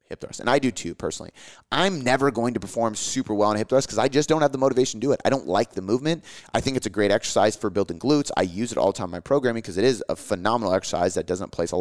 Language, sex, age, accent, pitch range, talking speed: English, male, 30-49, American, 100-130 Hz, 310 wpm